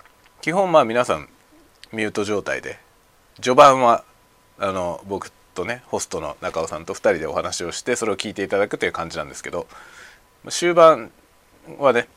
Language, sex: Japanese, male